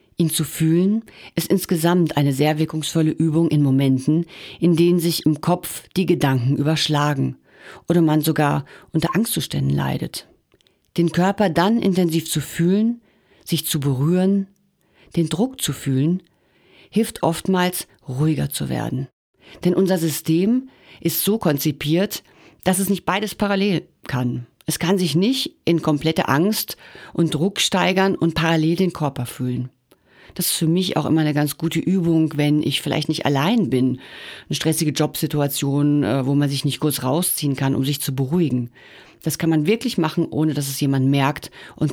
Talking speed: 160 wpm